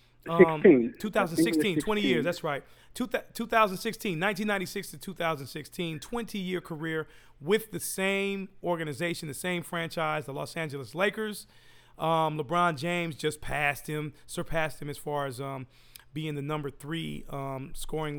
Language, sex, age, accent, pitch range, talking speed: English, male, 40-59, American, 150-185 Hz, 140 wpm